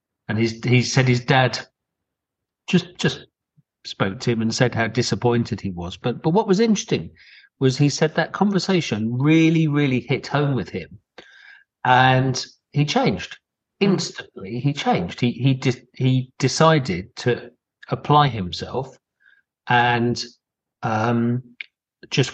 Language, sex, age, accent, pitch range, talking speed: English, male, 50-69, British, 120-145 Hz, 135 wpm